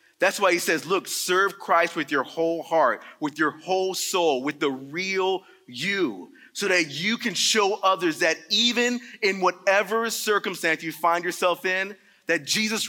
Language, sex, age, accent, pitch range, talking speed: English, male, 30-49, American, 160-195 Hz, 170 wpm